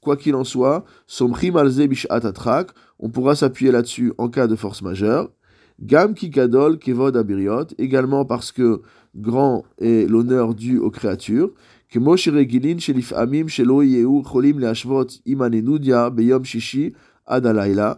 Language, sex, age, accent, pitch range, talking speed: French, male, 20-39, French, 115-145 Hz, 135 wpm